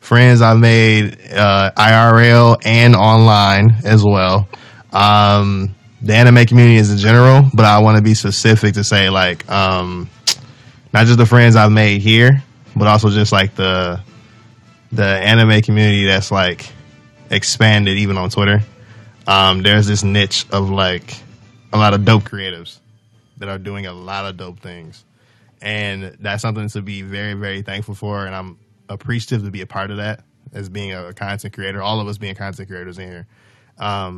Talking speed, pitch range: 170 wpm, 95-115 Hz